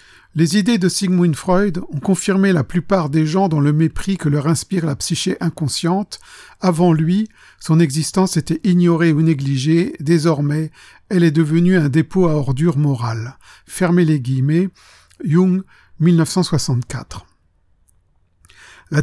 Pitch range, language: 150-185 Hz, French